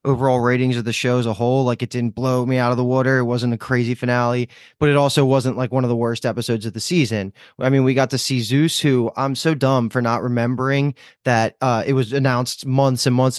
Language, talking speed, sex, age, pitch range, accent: English, 255 wpm, male, 20-39, 120-135 Hz, American